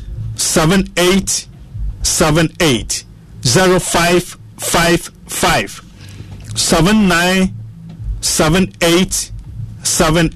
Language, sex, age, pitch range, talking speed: English, male, 50-69, 115-190 Hz, 75 wpm